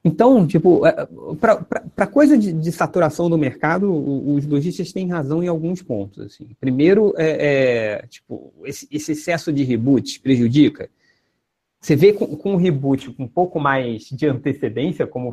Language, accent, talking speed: Portuguese, Brazilian, 165 wpm